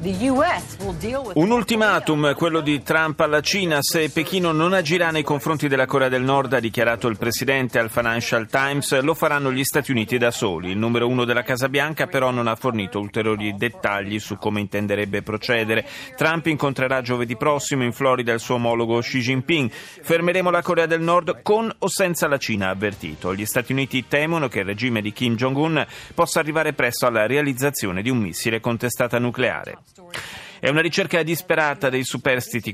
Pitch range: 110-145 Hz